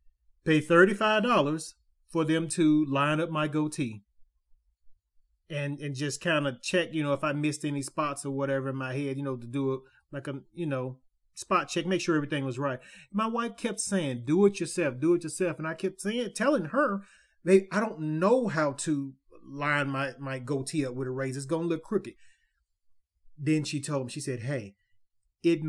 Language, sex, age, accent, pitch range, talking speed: English, male, 30-49, American, 130-165 Hz, 200 wpm